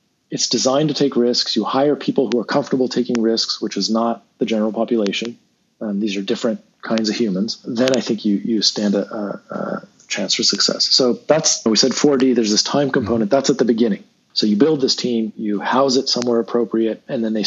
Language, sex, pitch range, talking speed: English, male, 115-140 Hz, 215 wpm